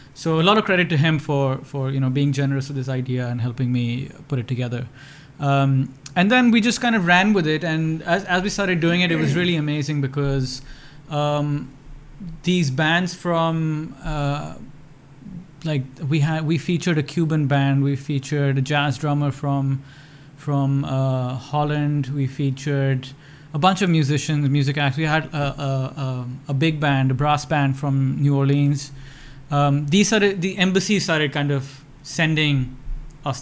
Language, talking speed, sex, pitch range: English, 175 wpm, male, 135-155 Hz